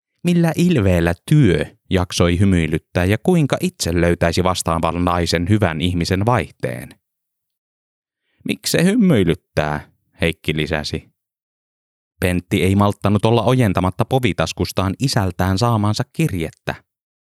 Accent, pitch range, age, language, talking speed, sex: native, 85-105 Hz, 20-39, Finnish, 100 wpm, male